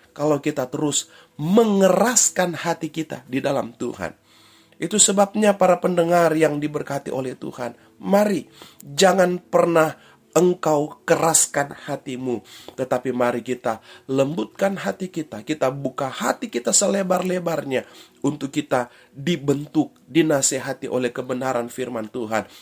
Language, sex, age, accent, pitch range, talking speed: Indonesian, male, 30-49, native, 135-195 Hz, 110 wpm